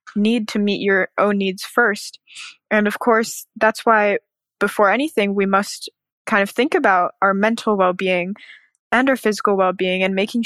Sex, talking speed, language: female, 165 wpm, English